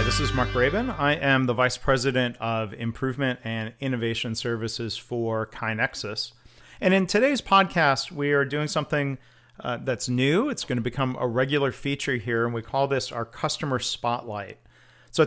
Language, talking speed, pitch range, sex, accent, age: English, 170 wpm, 115-135 Hz, male, American, 40-59